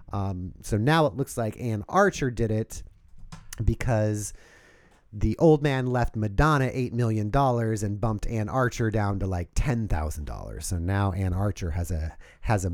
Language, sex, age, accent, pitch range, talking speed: English, male, 30-49, American, 105-135 Hz, 160 wpm